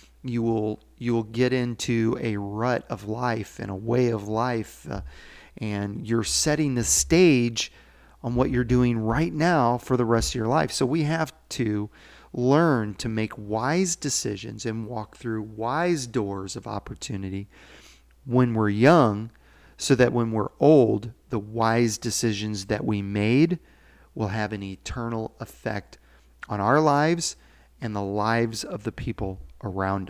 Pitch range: 100-120 Hz